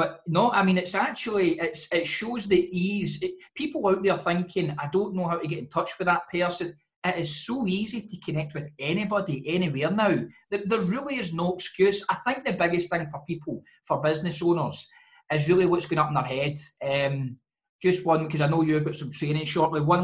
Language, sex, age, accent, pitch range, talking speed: English, male, 20-39, British, 150-185 Hz, 220 wpm